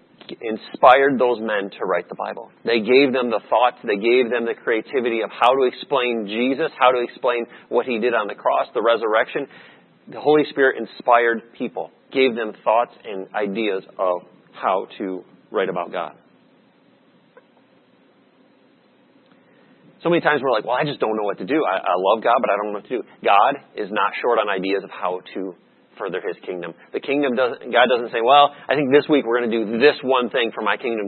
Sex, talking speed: male, 205 wpm